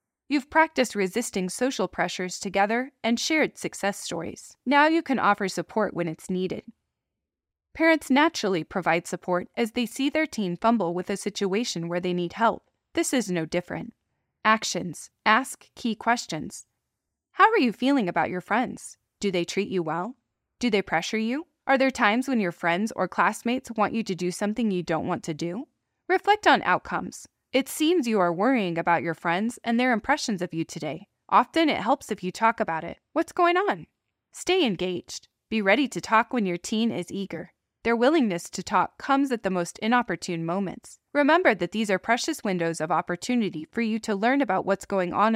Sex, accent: female, American